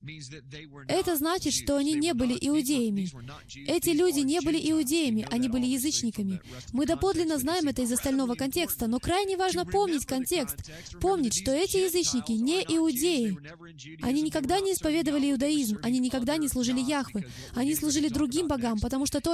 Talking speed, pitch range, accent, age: 155 wpm, 235-330 Hz, native, 20-39